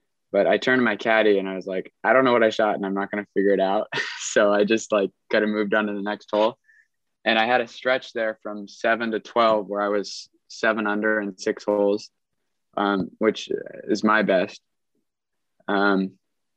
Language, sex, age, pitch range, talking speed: English, male, 20-39, 100-110 Hz, 215 wpm